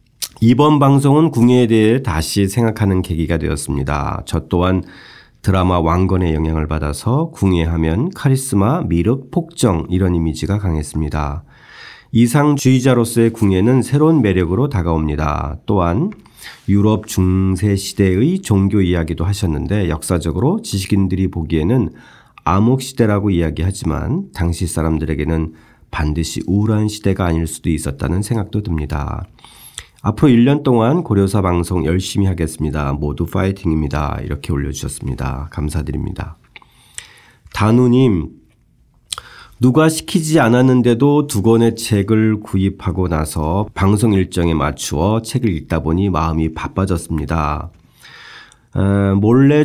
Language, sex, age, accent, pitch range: Korean, male, 40-59, native, 80-115 Hz